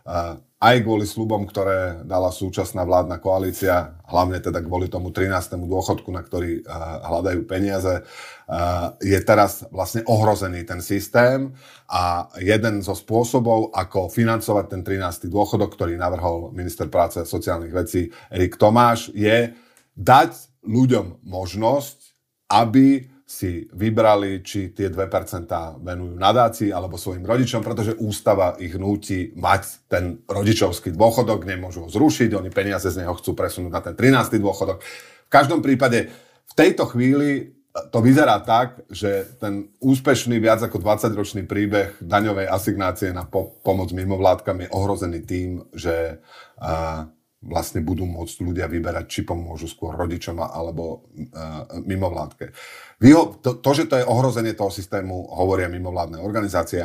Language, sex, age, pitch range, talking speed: Slovak, male, 30-49, 90-115 Hz, 140 wpm